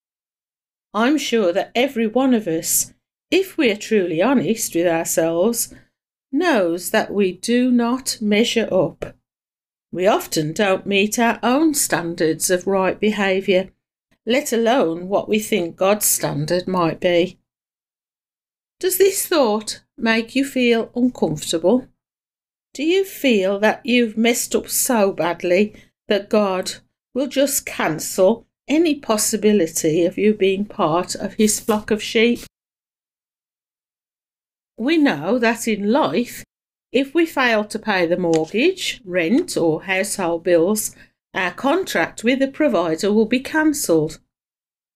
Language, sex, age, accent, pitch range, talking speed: English, female, 50-69, British, 190-255 Hz, 130 wpm